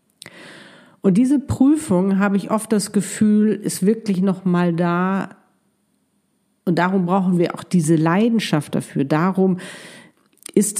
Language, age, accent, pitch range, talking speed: German, 50-69, German, 165-210 Hz, 130 wpm